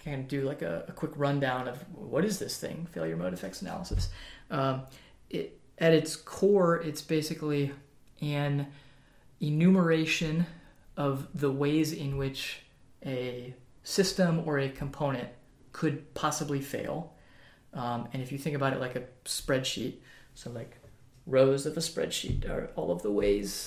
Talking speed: 150 wpm